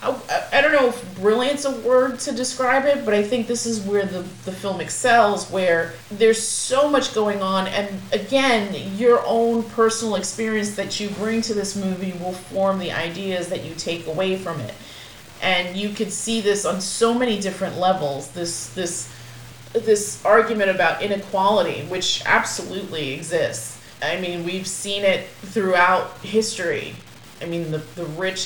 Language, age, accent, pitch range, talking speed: English, 30-49, American, 170-205 Hz, 165 wpm